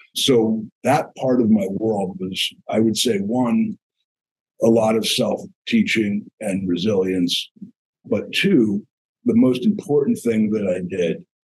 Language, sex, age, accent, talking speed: English, male, 50-69, American, 140 wpm